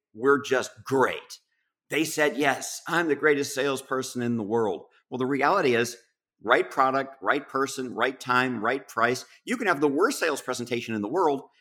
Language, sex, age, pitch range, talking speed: English, male, 50-69, 100-145 Hz, 180 wpm